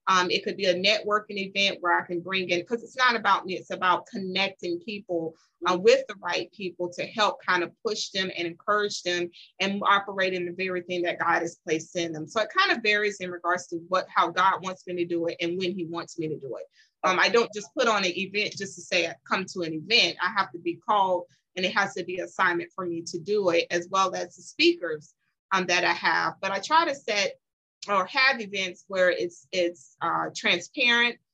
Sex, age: female, 30-49